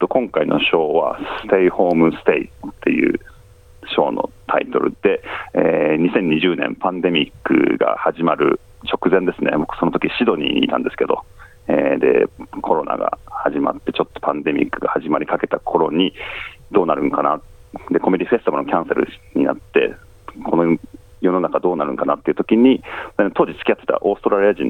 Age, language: 40-59, Japanese